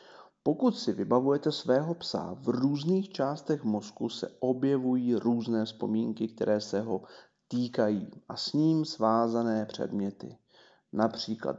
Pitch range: 115-160 Hz